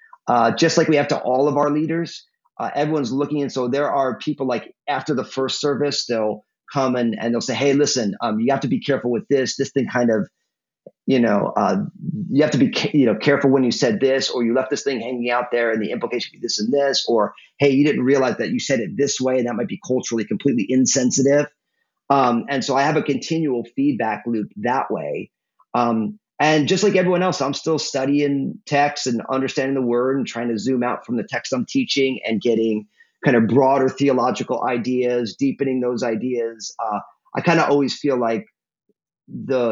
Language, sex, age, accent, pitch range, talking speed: English, male, 40-59, American, 120-145 Hz, 220 wpm